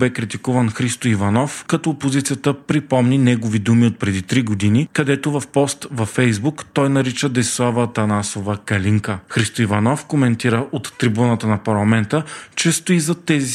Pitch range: 110-140 Hz